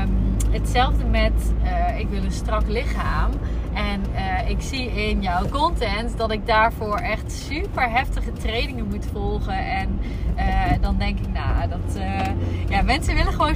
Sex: female